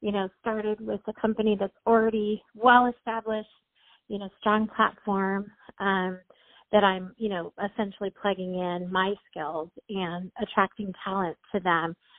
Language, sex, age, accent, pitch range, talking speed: English, female, 40-59, American, 195-225 Hz, 140 wpm